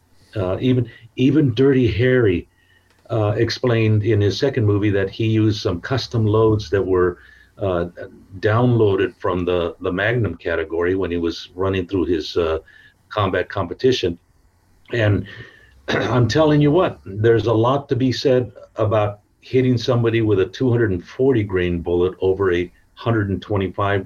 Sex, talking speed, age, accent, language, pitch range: male, 140 wpm, 50-69, American, English, 90-115 Hz